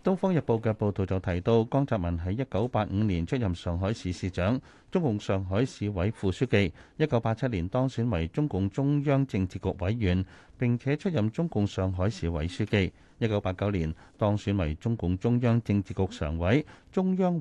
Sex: male